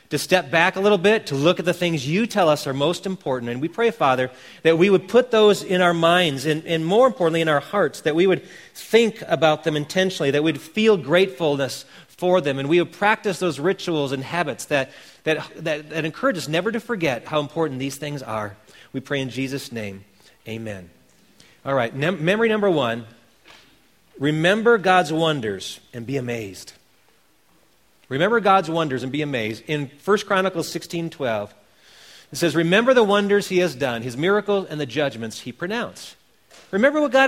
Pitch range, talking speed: 145-205 Hz, 185 wpm